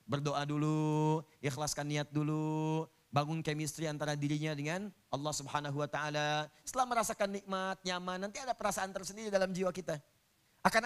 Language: Indonesian